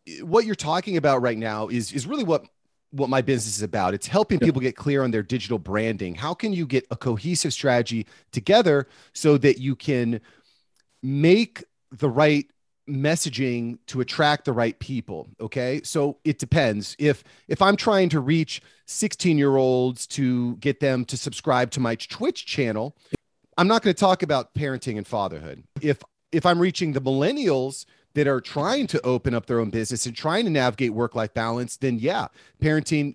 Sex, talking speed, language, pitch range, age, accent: male, 185 wpm, English, 120-155 Hz, 30-49, American